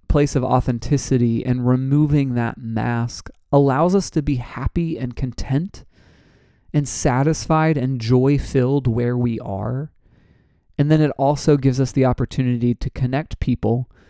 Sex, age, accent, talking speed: male, 30-49, American, 135 wpm